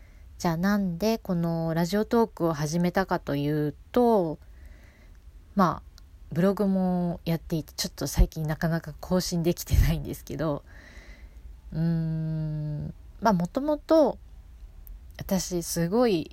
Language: Japanese